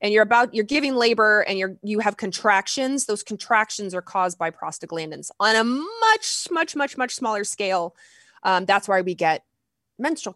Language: English